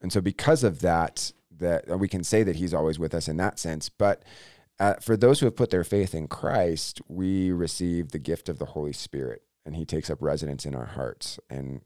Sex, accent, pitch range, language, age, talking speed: male, American, 80-95 Hz, English, 30-49, 230 wpm